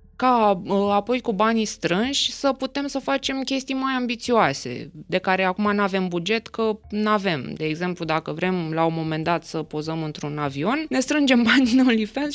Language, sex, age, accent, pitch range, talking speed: Romanian, female, 20-39, native, 185-255 Hz, 185 wpm